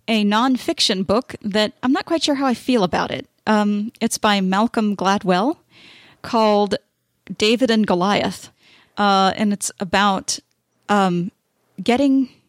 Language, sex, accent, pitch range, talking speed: English, female, American, 195-245 Hz, 135 wpm